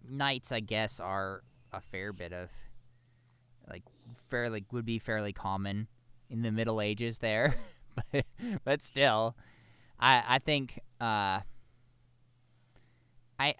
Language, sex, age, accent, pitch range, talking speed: English, male, 20-39, American, 115-130 Hz, 120 wpm